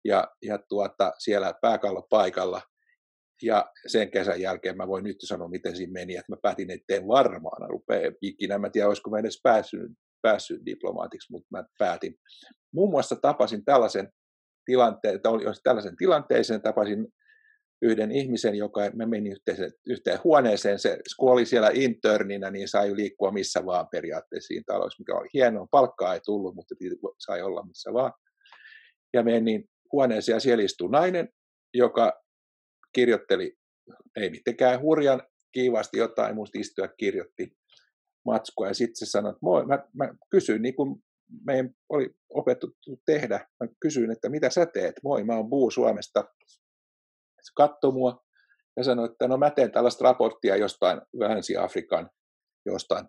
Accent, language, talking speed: native, Finnish, 150 wpm